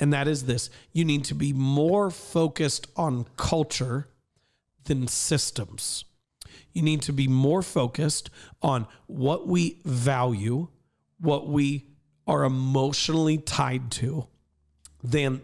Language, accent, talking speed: English, American, 120 wpm